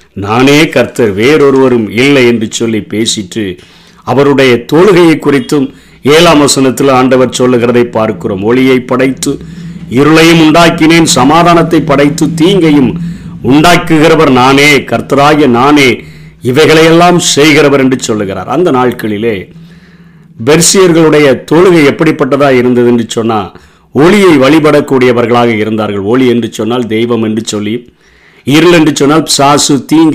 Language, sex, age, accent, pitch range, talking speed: Tamil, male, 50-69, native, 120-160 Hz, 100 wpm